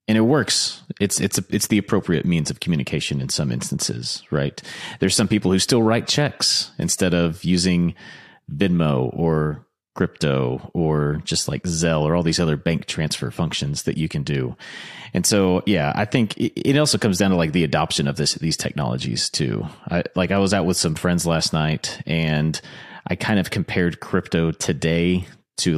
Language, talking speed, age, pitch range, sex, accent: English, 190 wpm, 30-49, 80-100 Hz, male, American